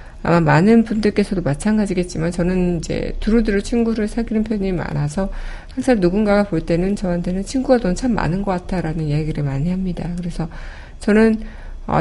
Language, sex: Korean, female